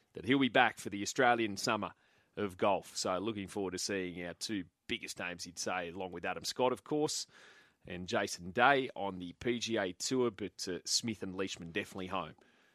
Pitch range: 105-140 Hz